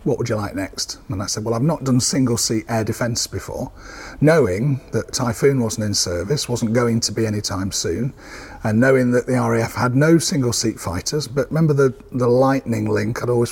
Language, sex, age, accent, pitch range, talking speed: English, male, 40-59, British, 105-130 Hz, 200 wpm